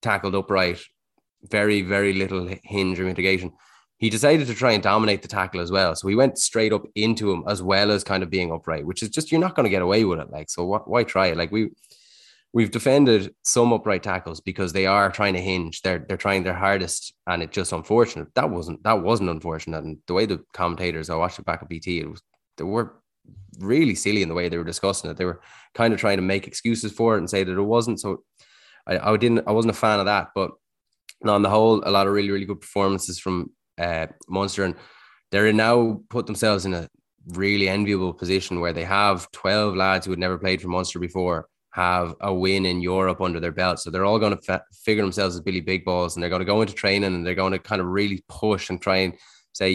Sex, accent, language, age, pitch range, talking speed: male, Irish, English, 20-39, 90-105 Hz, 245 wpm